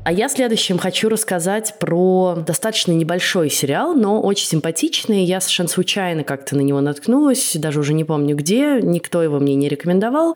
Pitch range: 145-195 Hz